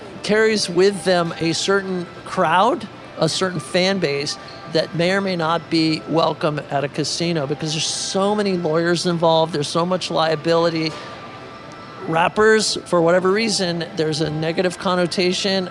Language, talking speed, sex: English, 145 wpm, male